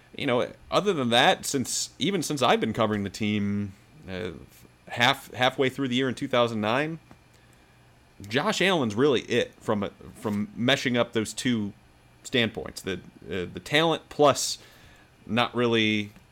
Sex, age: male, 30-49